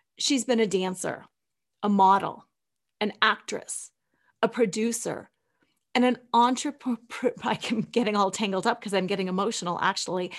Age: 30-49